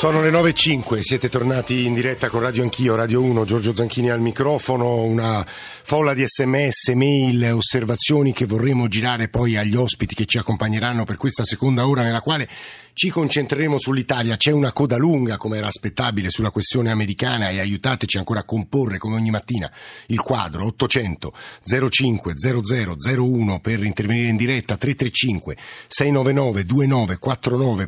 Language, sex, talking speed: Italian, male, 150 wpm